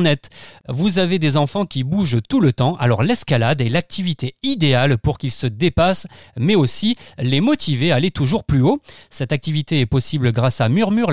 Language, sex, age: French, male, 30-49